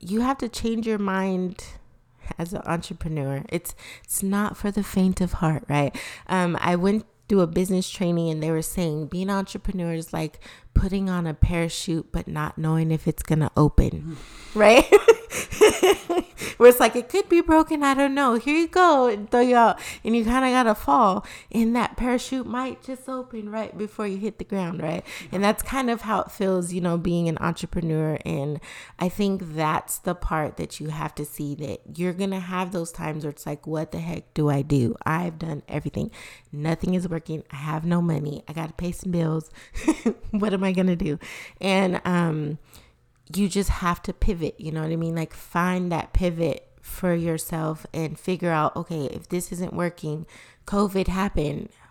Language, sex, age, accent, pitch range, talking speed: English, female, 30-49, American, 160-210 Hz, 200 wpm